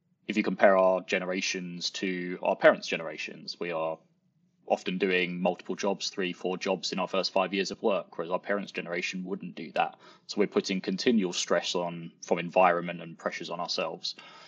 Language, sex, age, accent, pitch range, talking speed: English, male, 20-39, British, 85-100 Hz, 180 wpm